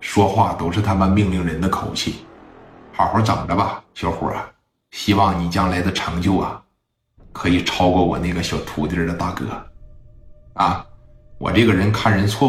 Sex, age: male, 50-69